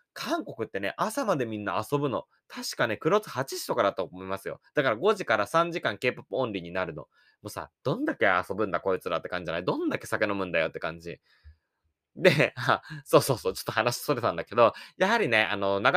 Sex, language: male, Japanese